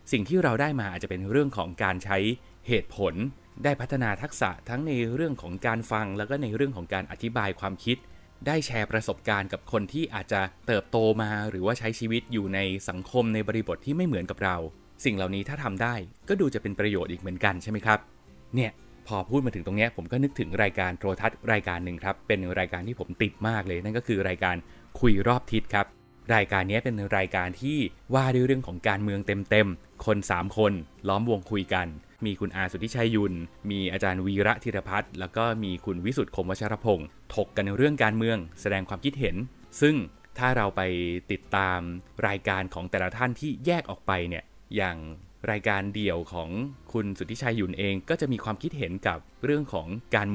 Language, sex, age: Thai, male, 20-39